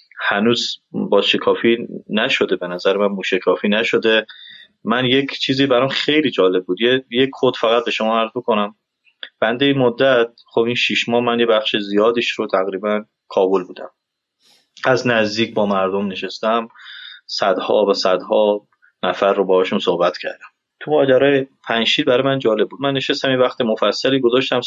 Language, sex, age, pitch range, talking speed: Persian, male, 30-49, 105-135 Hz, 155 wpm